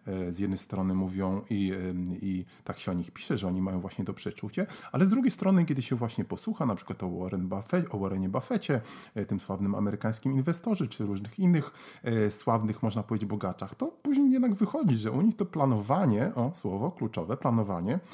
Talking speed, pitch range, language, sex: 190 wpm, 100-135 Hz, Polish, male